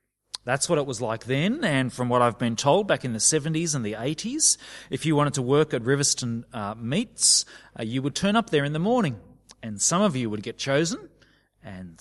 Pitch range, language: 120-185 Hz, English